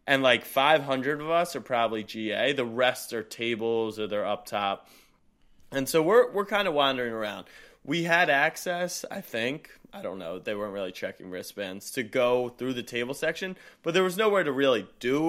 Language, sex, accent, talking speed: English, male, American, 195 wpm